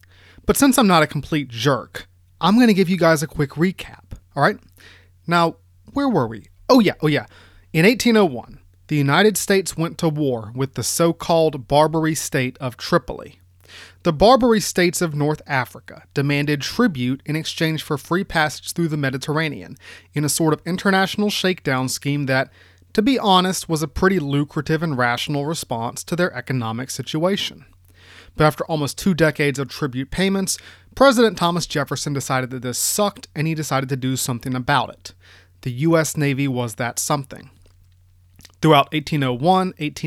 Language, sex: English, male